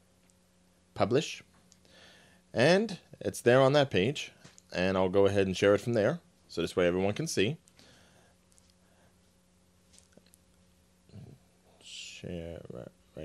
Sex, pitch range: male, 90-105 Hz